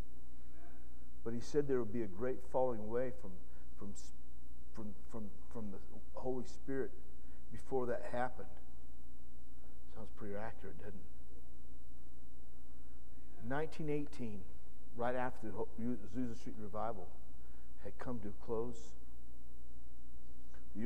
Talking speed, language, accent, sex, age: 110 wpm, English, American, male, 50-69